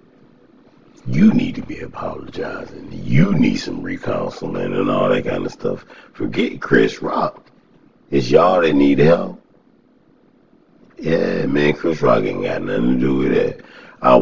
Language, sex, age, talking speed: English, male, 60-79, 150 wpm